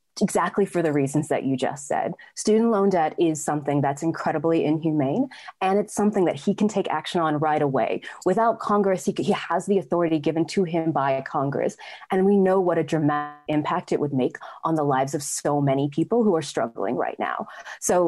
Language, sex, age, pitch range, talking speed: English, female, 20-39, 150-200 Hz, 205 wpm